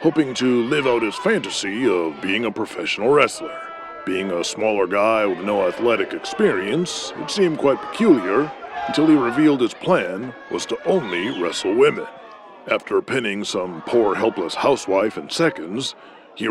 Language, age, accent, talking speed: English, 40-59, American, 155 wpm